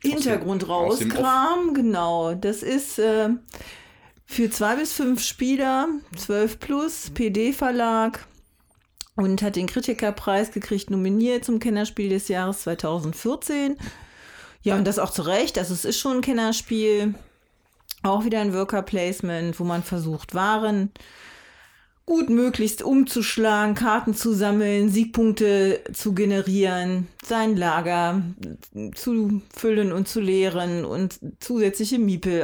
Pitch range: 180-230 Hz